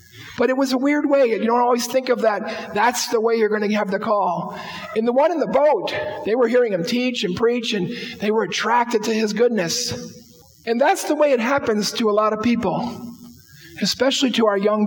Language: English